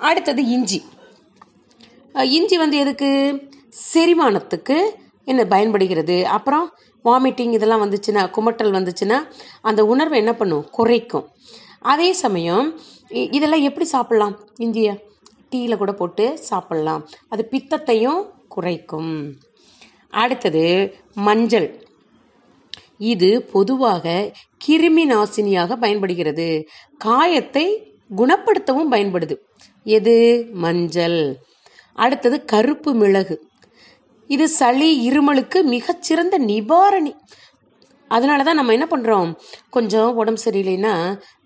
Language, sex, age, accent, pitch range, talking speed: Tamil, female, 30-49, native, 195-275 Hz, 85 wpm